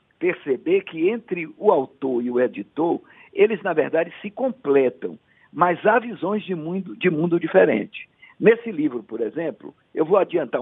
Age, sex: 60-79, male